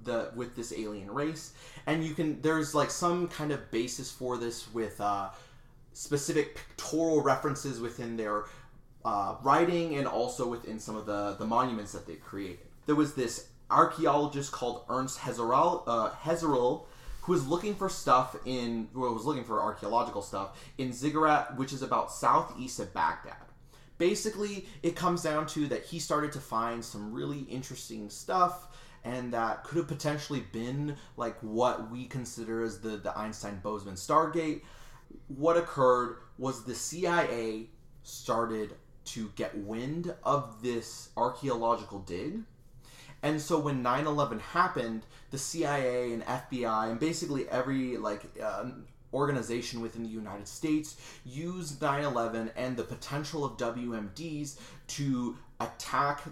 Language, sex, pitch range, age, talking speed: English, male, 115-150 Hz, 30-49, 145 wpm